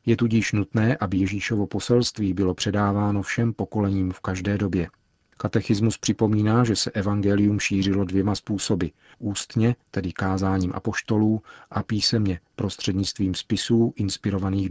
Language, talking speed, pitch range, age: Czech, 120 wpm, 95-110 Hz, 40-59